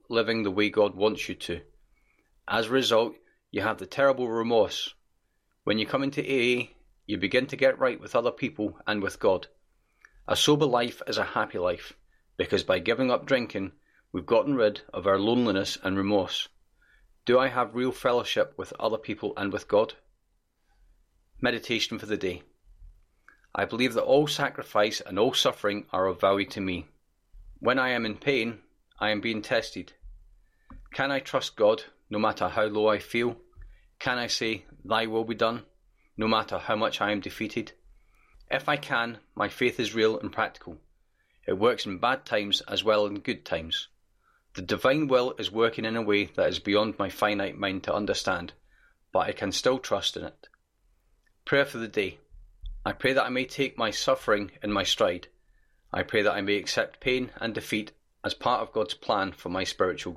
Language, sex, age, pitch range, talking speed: English, male, 30-49, 100-125 Hz, 185 wpm